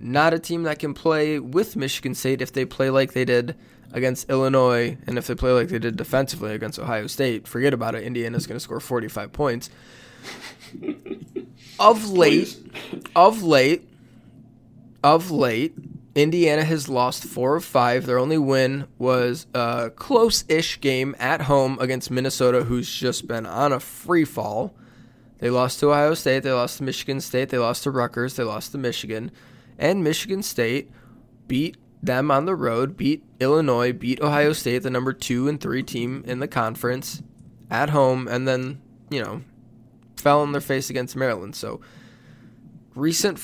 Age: 20-39